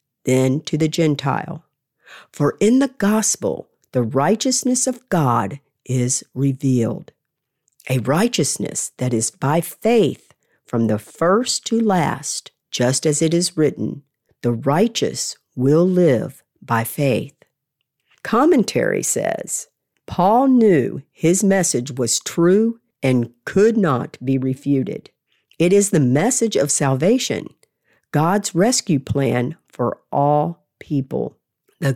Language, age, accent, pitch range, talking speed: English, 50-69, American, 130-190 Hz, 115 wpm